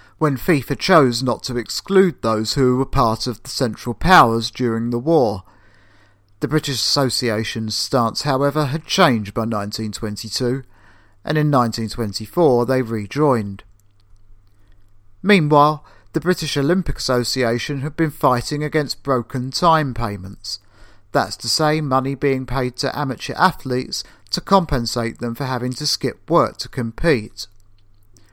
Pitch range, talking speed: 110-150 Hz, 130 wpm